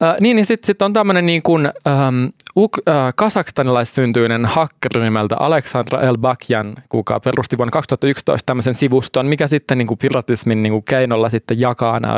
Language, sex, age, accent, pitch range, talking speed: Finnish, male, 20-39, native, 115-135 Hz, 155 wpm